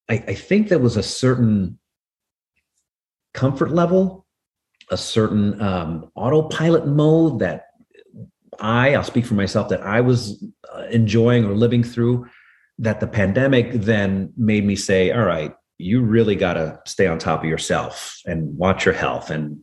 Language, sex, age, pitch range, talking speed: English, male, 40-59, 95-125 Hz, 155 wpm